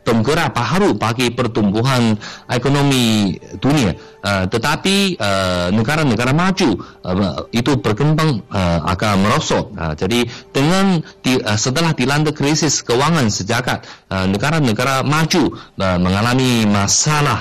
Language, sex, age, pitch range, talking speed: Malay, male, 30-49, 110-155 Hz, 115 wpm